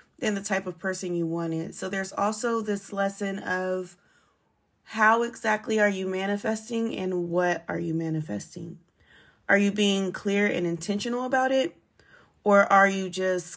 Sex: female